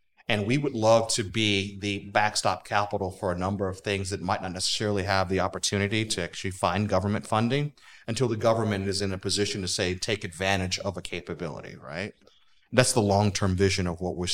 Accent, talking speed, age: American, 200 wpm, 30-49